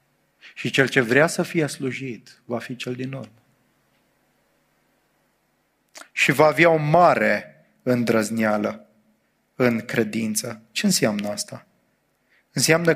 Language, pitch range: English, 125-150 Hz